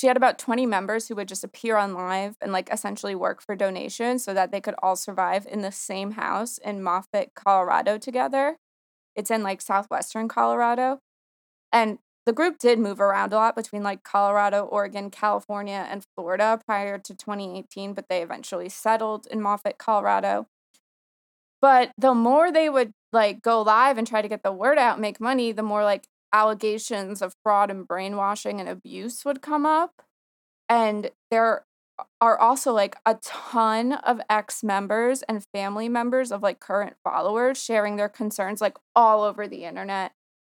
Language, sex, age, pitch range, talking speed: English, female, 20-39, 200-230 Hz, 170 wpm